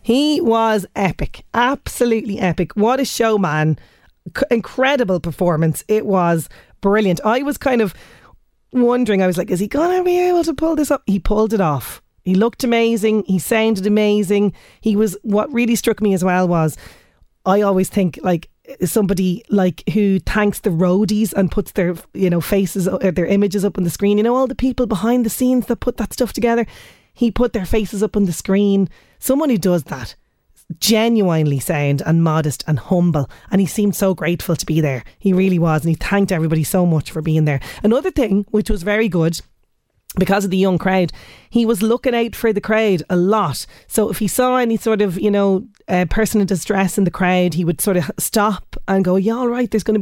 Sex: female